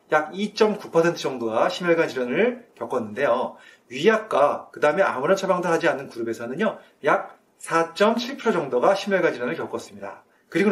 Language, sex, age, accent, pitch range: Korean, male, 30-49, native, 145-215 Hz